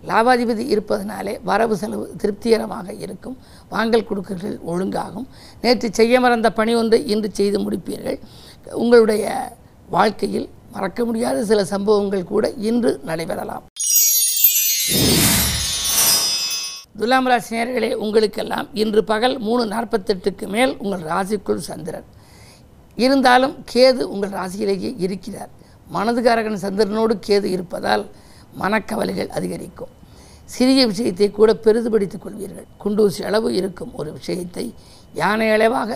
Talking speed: 100 wpm